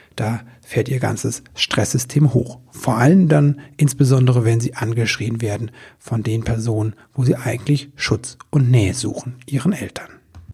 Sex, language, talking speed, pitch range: male, German, 150 wpm, 115-140 Hz